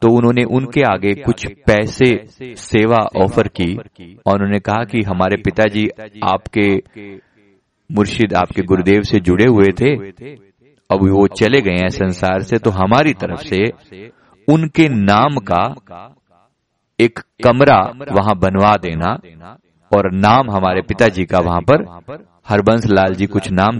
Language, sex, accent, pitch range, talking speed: Hindi, male, native, 95-115 Hz, 135 wpm